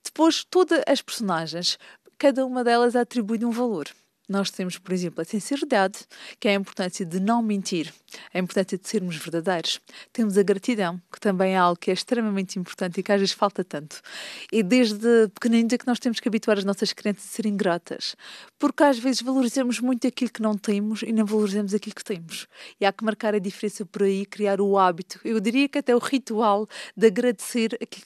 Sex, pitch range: female, 190-245 Hz